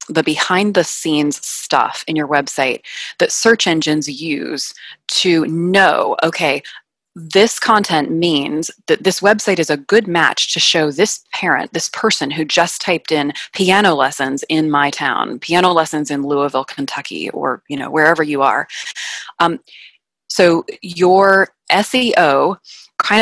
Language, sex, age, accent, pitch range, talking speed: English, female, 20-39, American, 150-190 Hz, 145 wpm